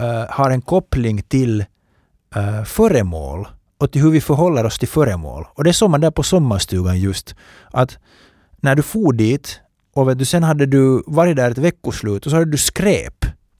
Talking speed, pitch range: 185 wpm, 110-155 Hz